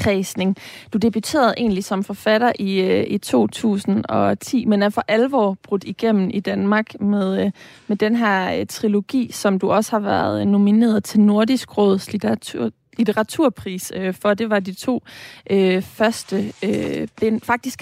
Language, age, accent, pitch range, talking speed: Danish, 20-39, native, 195-225 Hz, 145 wpm